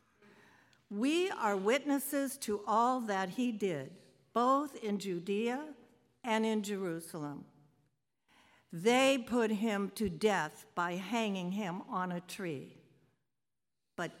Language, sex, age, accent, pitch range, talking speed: English, female, 60-79, American, 185-260 Hz, 110 wpm